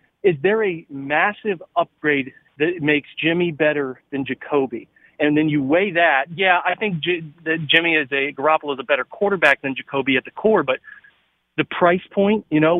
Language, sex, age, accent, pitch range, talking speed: English, male, 40-59, American, 150-175 Hz, 185 wpm